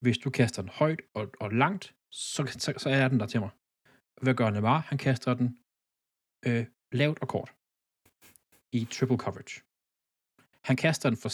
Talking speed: 175 wpm